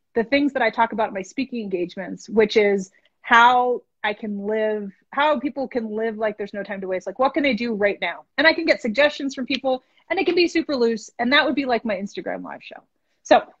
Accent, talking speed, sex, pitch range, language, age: American, 245 wpm, female, 210-285 Hz, English, 30-49